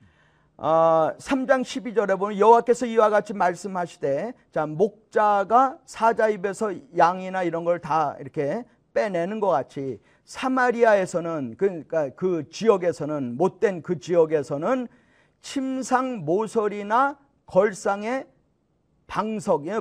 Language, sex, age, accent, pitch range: Korean, male, 40-59, native, 155-220 Hz